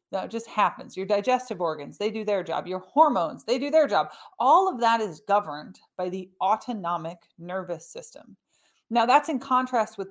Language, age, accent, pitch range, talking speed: English, 30-49, American, 185-270 Hz, 185 wpm